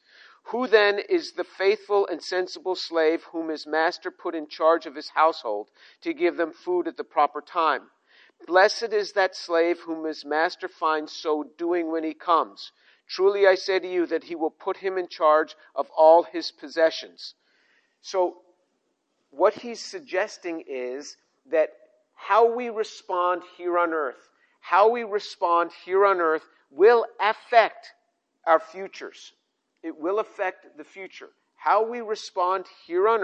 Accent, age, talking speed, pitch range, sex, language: American, 50-69, 155 wpm, 160-205 Hz, male, English